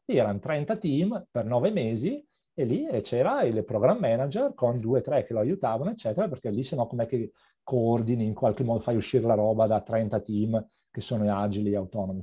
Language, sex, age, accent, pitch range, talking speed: Italian, male, 40-59, native, 105-130 Hz, 190 wpm